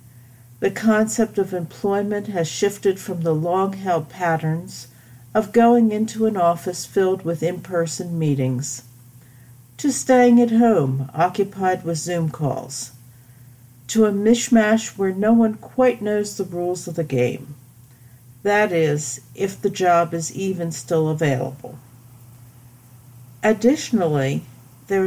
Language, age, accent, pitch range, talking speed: English, 50-69, American, 125-200 Hz, 120 wpm